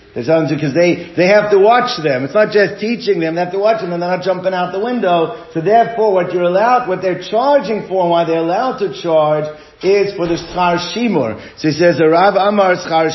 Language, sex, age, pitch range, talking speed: English, male, 60-79, 150-190 Hz, 220 wpm